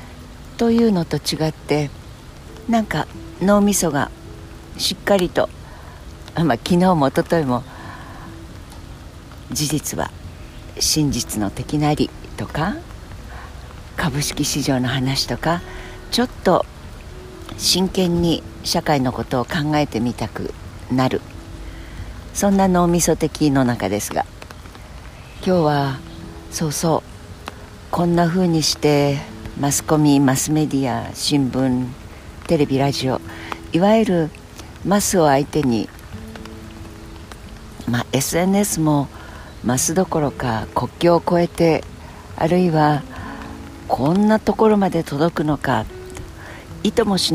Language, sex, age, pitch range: Japanese, female, 60-79, 105-160 Hz